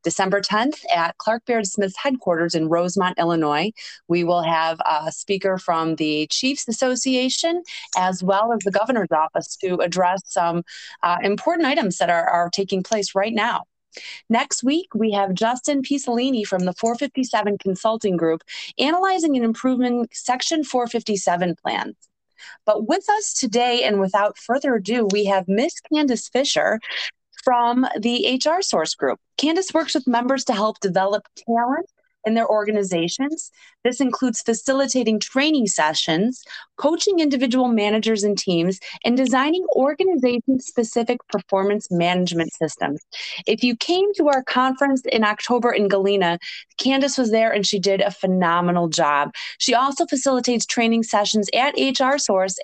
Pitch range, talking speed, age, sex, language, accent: 195-265 Hz, 145 wpm, 30-49, female, English, American